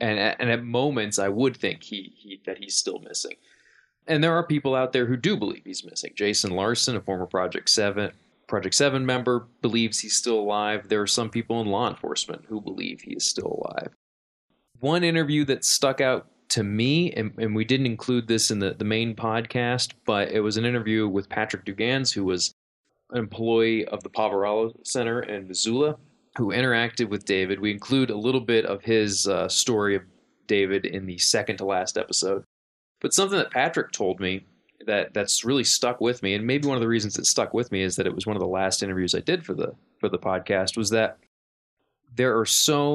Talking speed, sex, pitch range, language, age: 210 wpm, male, 100-120 Hz, English, 20-39